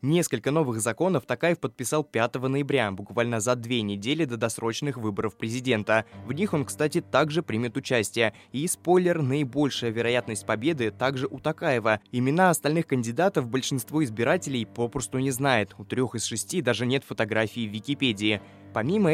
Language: Russian